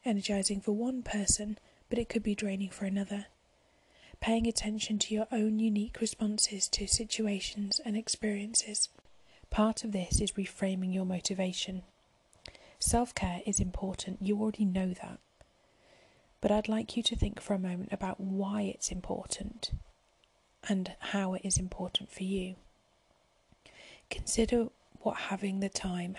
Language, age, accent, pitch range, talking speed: English, 30-49, British, 190-215 Hz, 140 wpm